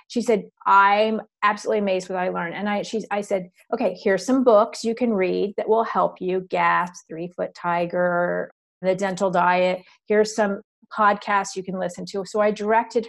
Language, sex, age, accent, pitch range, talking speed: English, female, 30-49, American, 185-220 Hz, 190 wpm